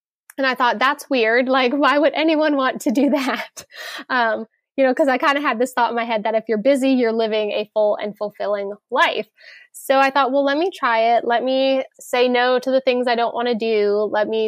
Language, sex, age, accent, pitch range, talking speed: English, female, 10-29, American, 220-275 Hz, 245 wpm